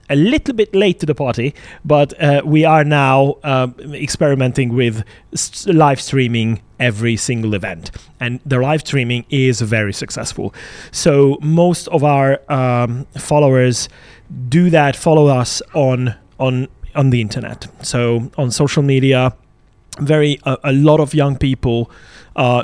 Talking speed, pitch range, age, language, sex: 140 wpm, 120-145 Hz, 30-49, English, male